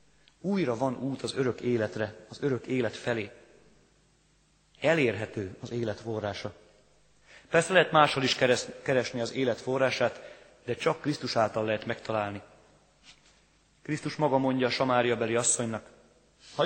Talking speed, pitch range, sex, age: 130 wpm, 115-135 Hz, male, 30-49